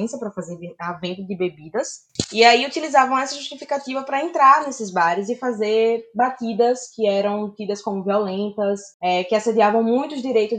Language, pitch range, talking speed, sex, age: Portuguese, 195-245 Hz, 155 wpm, female, 20-39